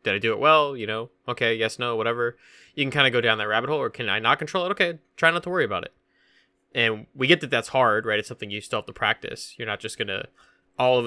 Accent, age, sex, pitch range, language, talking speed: American, 20-39, male, 95-125 Hz, English, 295 wpm